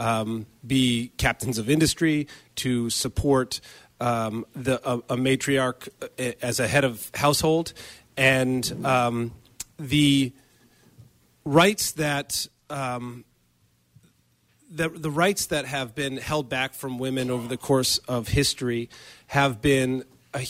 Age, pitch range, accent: 40-59, 120-140 Hz, American